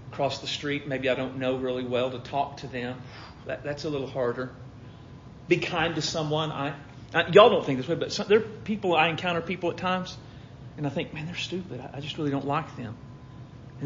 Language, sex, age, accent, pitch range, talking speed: English, male, 40-59, American, 125-145 Hz, 230 wpm